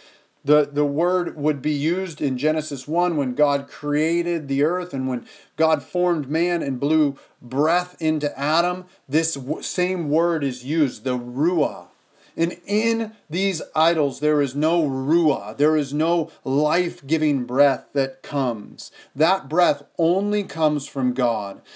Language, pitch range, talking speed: English, 140-170 Hz, 145 wpm